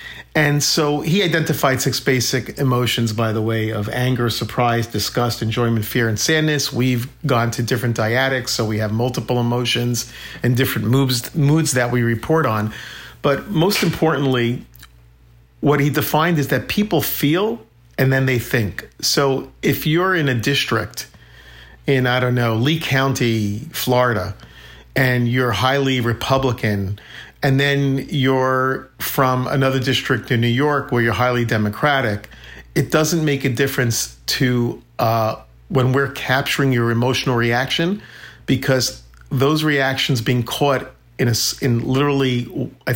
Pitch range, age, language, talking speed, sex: 115-140 Hz, 50-69, English, 140 wpm, male